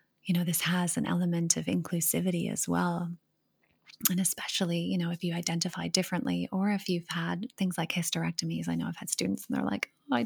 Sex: female